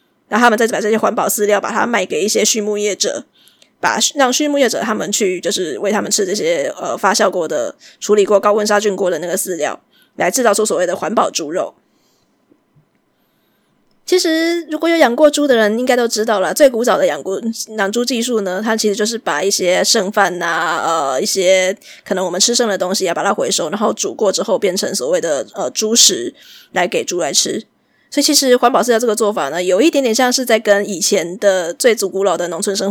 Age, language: 20-39, Chinese